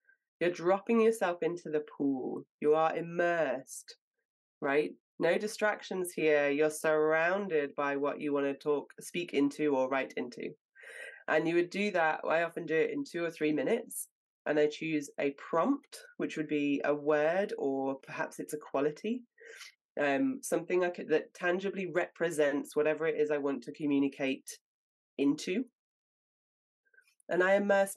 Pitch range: 150-200 Hz